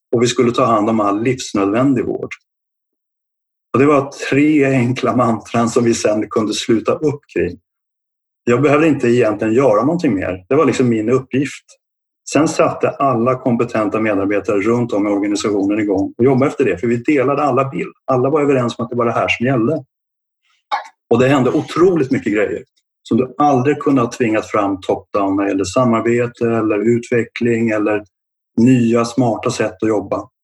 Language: Swedish